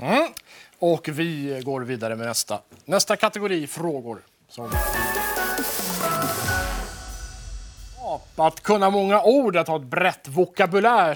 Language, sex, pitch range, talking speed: Swedish, male, 125-185 Hz, 95 wpm